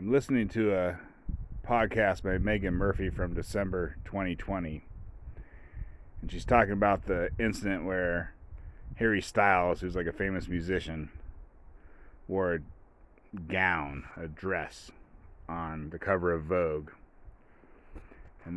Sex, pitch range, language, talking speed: male, 80-100 Hz, English, 115 wpm